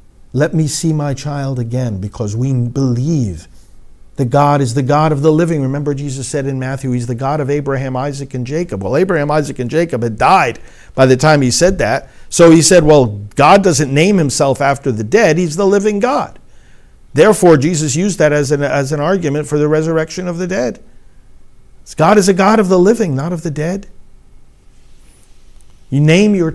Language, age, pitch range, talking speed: English, 50-69, 120-155 Hz, 195 wpm